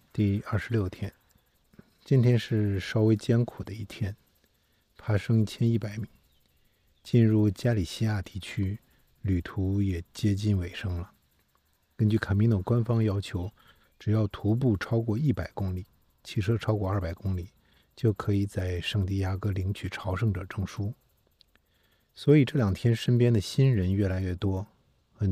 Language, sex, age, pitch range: Chinese, male, 50-69, 95-110 Hz